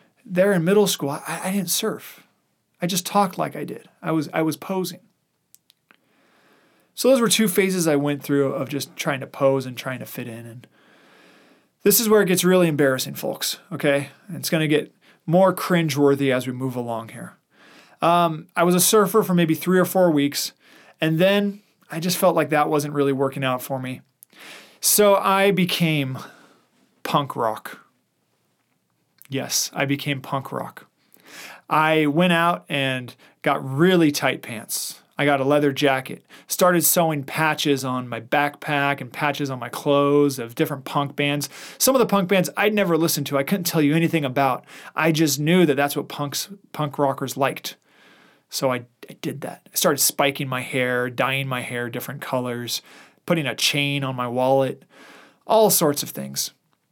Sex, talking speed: male, 175 wpm